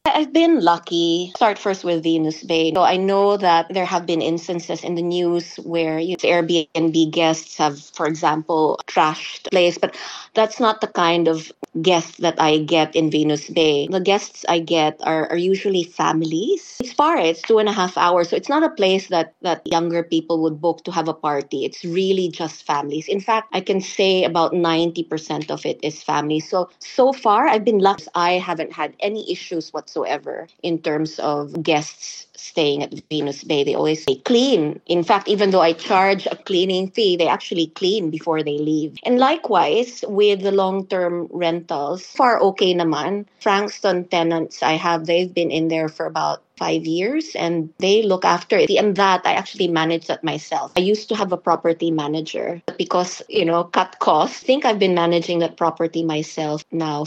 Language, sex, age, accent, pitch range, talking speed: Filipino, female, 20-39, native, 160-195 Hz, 195 wpm